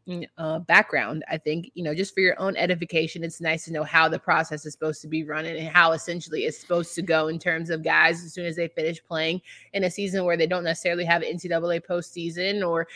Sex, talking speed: female, 240 wpm